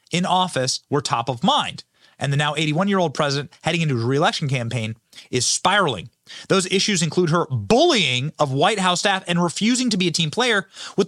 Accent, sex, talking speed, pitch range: American, male, 190 wpm, 150-210 Hz